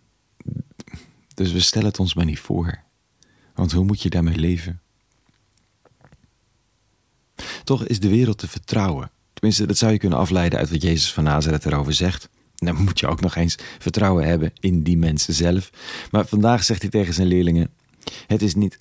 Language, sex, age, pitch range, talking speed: Dutch, male, 40-59, 85-110 Hz, 180 wpm